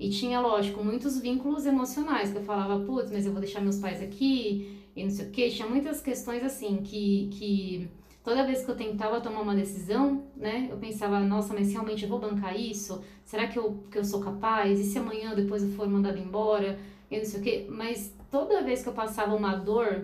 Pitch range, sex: 200-240 Hz, female